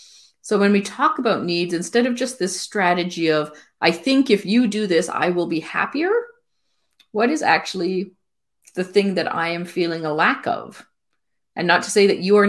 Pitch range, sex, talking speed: 170-205 Hz, female, 195 wpm